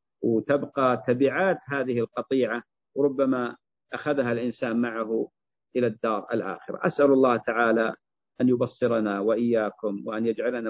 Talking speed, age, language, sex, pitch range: 105 wpm, 50-69, Arabic, male, 105-120 Hz